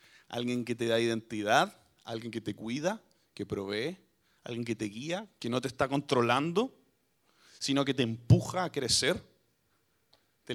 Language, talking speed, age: Spanish, 155 wpm, 30-49